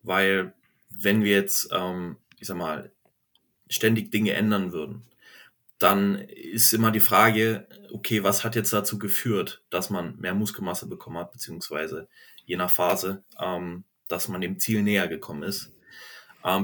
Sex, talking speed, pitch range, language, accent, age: male, 150 wpm, 100-115 Hz, German, German, 30-49